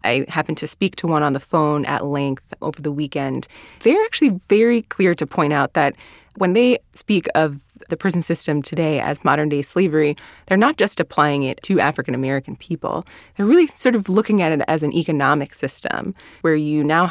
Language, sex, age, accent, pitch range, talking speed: English, female, 20-39, American, 150-190 Hz, 195 wpm